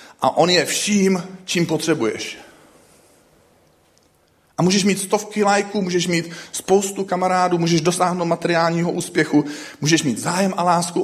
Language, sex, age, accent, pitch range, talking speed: Czech, male, 40-59, native, 135-180 Hz, 130 wpm